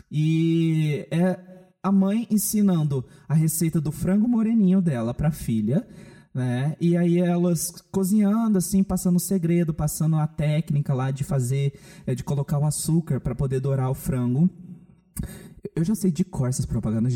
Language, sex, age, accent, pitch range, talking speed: Portuguese, male, 20-39, Brazilian, 140-185 Hz, 155 wpm